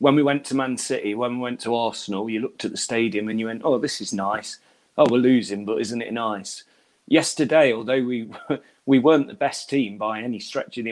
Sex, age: male, 30-49